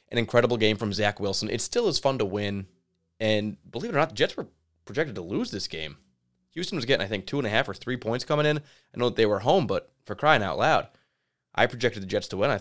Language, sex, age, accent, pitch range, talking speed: English, male, 20-39, American, 100-130 Hz, 270 wpm